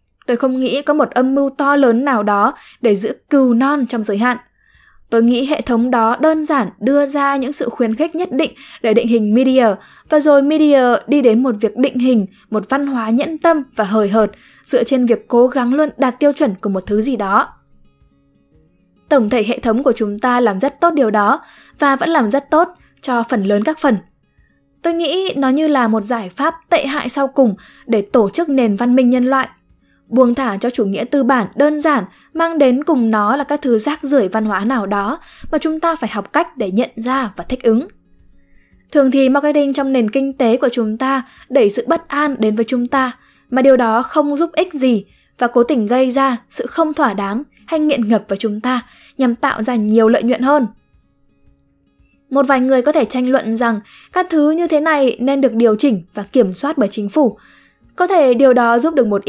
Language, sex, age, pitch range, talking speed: Vietnamese, female, 10-29, 225-285 Hz, 225 wpm